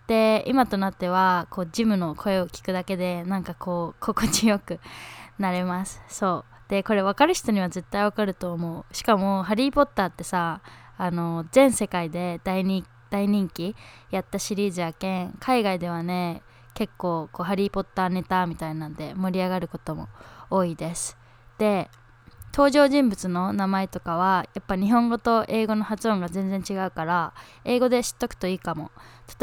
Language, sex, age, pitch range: Japanese, female, 20-39, 175-215 Hz